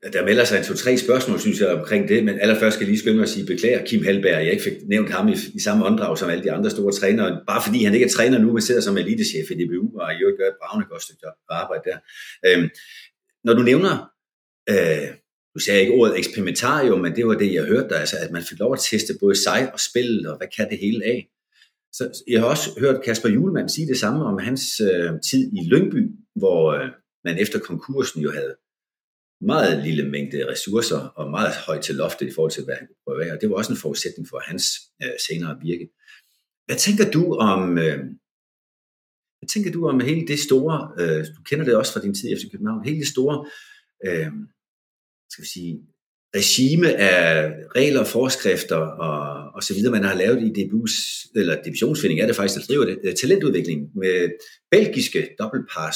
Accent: native